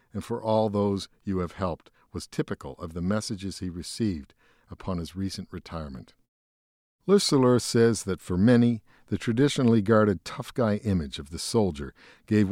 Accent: American